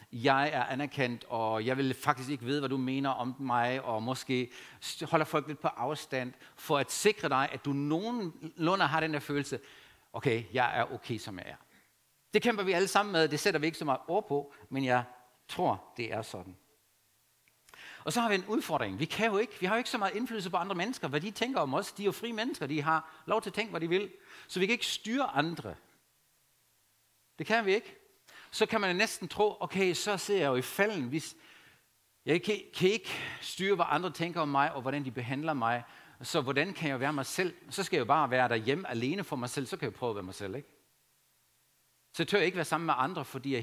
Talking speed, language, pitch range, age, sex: 240 wpm, Danish, 130-185 Hz, 60-79, male